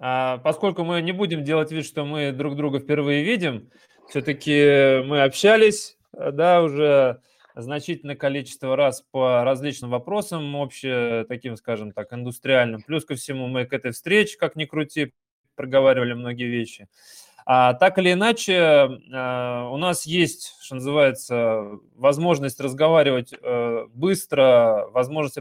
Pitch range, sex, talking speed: 130-160 Hz, male, 120 wpm